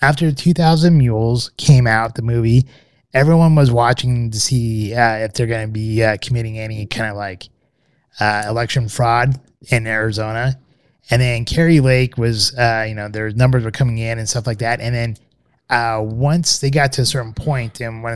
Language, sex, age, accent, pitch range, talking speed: English, male, 20-39, American, 105-130 Hz, 190 wpm